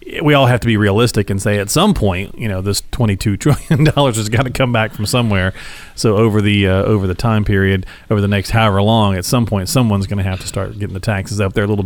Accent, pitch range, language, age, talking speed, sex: American, 110-145 Hz, English, 40-59, 270 wpm, male